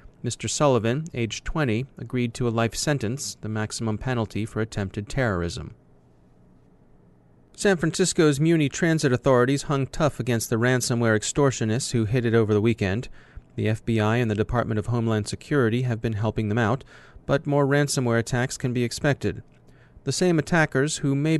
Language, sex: English, male